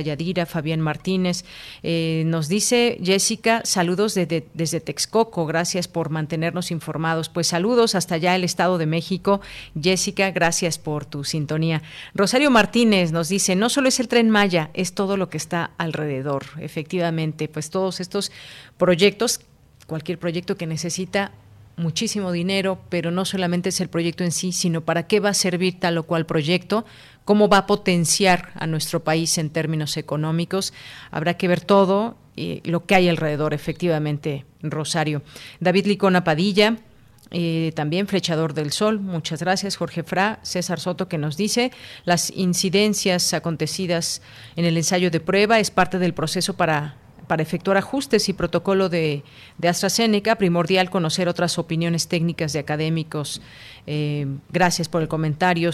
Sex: female